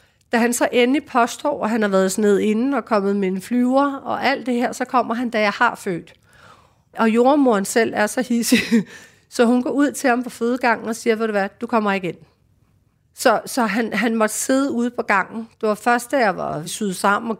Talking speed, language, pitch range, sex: 240 wpm, Danish, 210-250 Hz, female